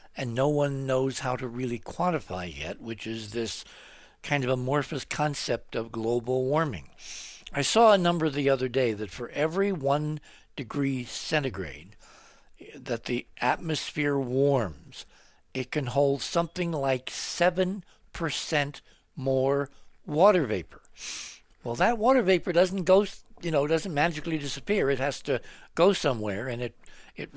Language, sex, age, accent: English, male, 60-79, American